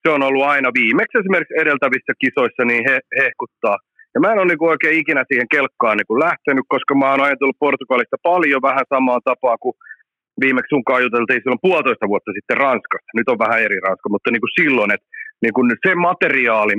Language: Finnish